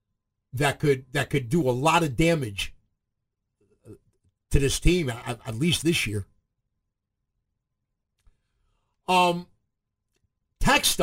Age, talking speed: 50-69, 105 wpm